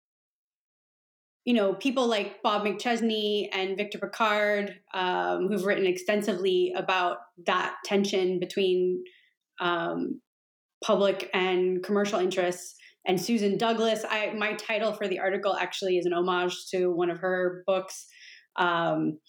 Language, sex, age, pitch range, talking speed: English, female, 20-39, 185-220 Hz, 130 wpm